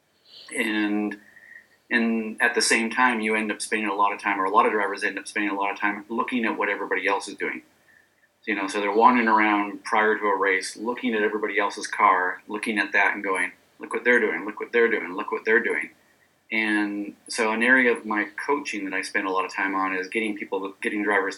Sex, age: male, 30-49